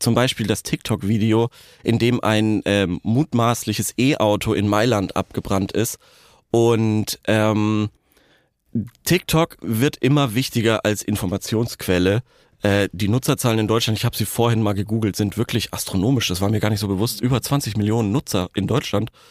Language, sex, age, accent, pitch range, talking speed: German, male, 30-49, German, 105-125 Hz, 150 wpm